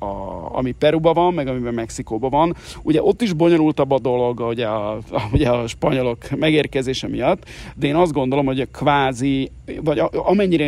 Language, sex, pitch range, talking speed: Hungarian, male, 115-150 Hz, 170 wpm